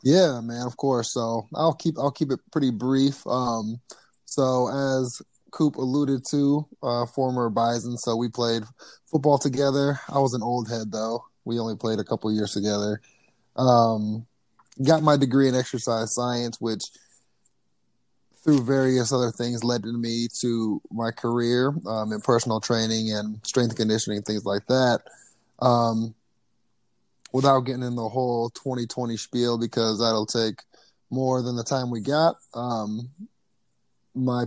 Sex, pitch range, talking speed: male, 115-130 Hz, 150 wpm